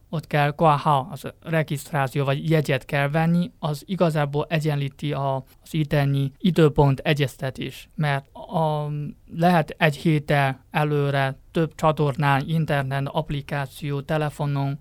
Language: Hungarian